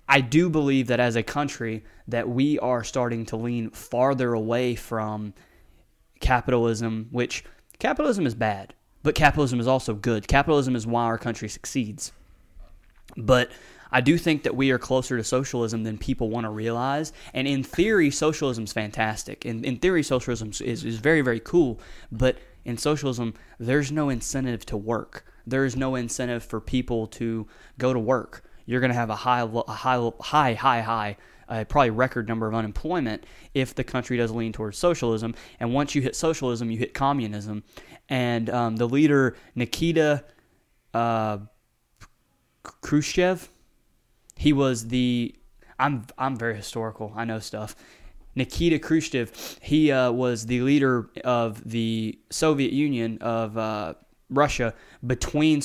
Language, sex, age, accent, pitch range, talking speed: English, male, 20-39, American, 115-135 Hz, 155 wpm